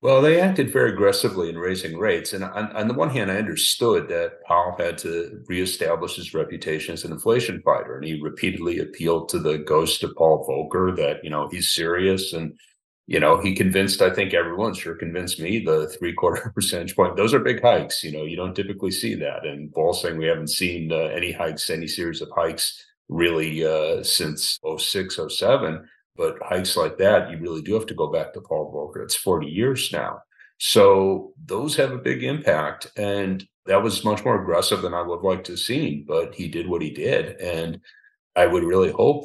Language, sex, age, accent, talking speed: English, male, 50-69, American, 205 wpm